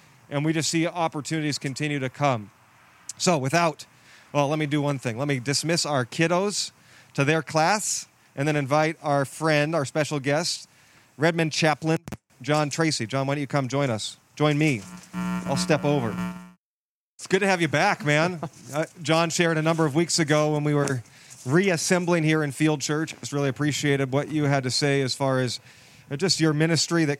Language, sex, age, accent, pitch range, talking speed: English, male, 40-59, American, 140-165 Hz, 190 wpm